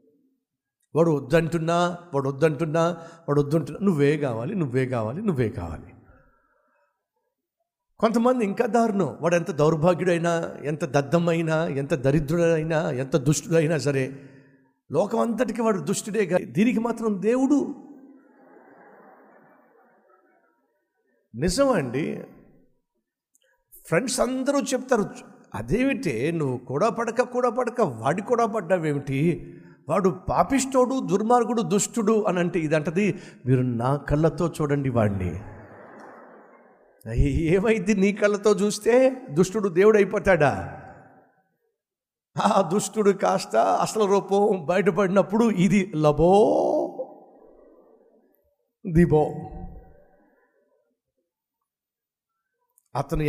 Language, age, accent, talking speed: Telugu, 60-79, native, 80 wpm